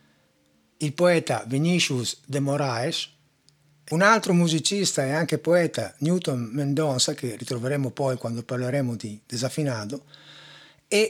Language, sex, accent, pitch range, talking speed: Italian, male, native, 130-170 Hz, 115 wpm